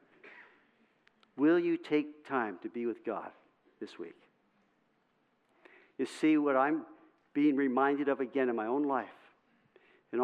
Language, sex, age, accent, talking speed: English, male, 50-69, American, 135 wpm